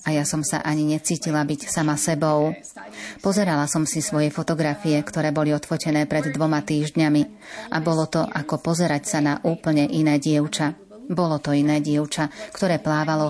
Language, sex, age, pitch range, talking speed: Slovak, female, 30-49, 150-165 Hz, 160 wpm